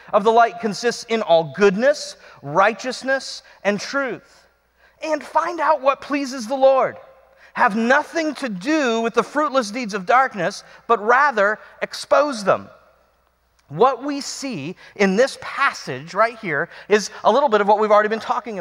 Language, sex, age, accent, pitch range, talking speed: English, male, 40-59, American, 195-255 Hz, 160 wpm